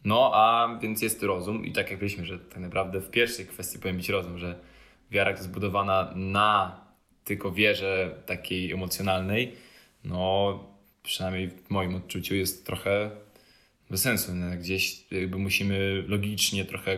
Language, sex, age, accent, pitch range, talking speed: Polish, male, 20-39, native, 95-100 Hz, 145 wpm